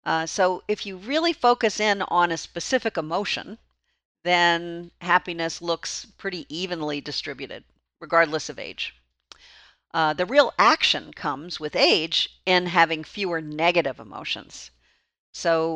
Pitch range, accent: 155-200 Hz, American